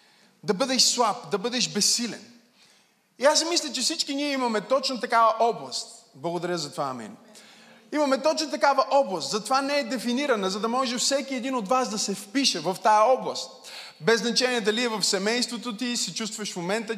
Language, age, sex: Bulgarian, 20-39, male